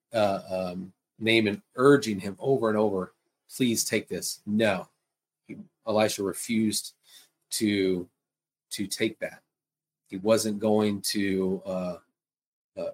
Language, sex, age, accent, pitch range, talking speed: English, male, 30-49, American, 100-115 Hz, 115 wpm